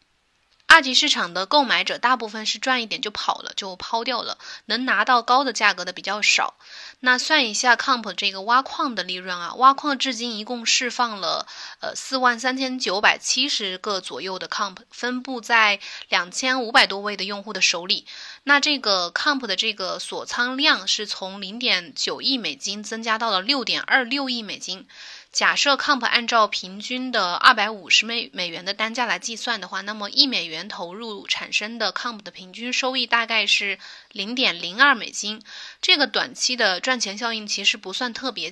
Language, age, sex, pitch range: Chinese, 20-39, female, 200-255 Hz